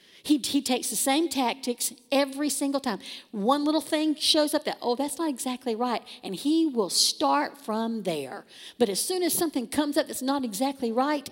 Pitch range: 230-300 Hz